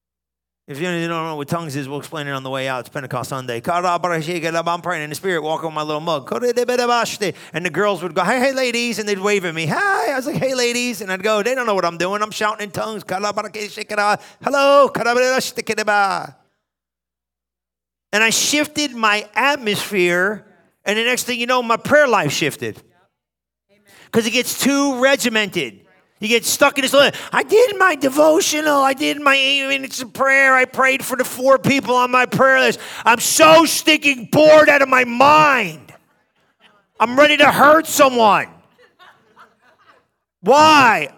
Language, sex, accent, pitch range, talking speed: English, male, American, 180-260 Hz, 175 wpm